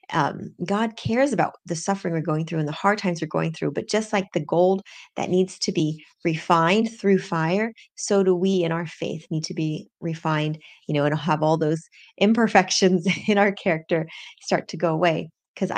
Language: English